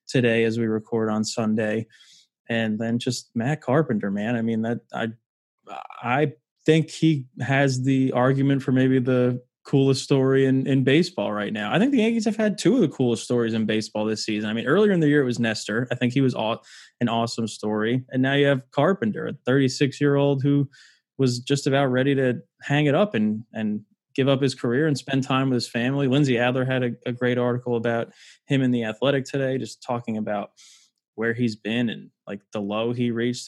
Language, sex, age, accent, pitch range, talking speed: English, male, 20-39, American, 115-140 Hz, 210 wpm